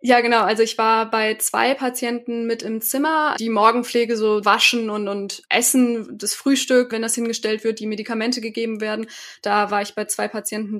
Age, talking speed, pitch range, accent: 20-39, 190 wpm, 215-245 Hz, German